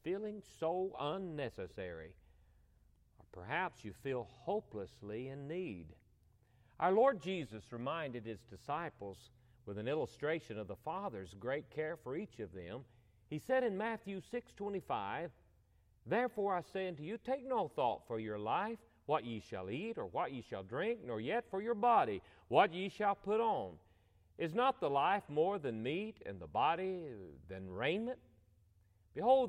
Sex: male